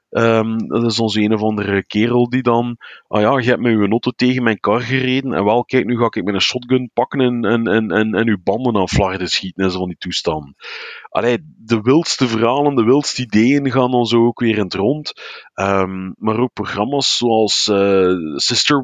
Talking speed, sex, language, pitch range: 215 wpm, male, Dutch, 105-130 Hz